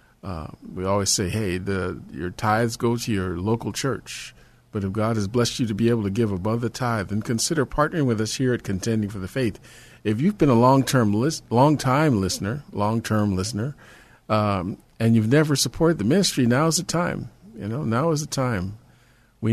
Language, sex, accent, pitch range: English, male, American, 105-125 Hz